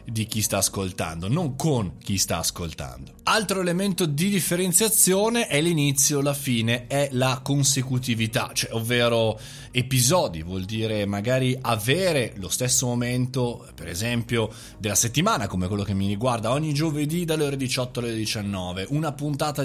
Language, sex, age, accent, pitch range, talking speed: Italian, male, 30-49, native, 105-150 Hz, 145 wpm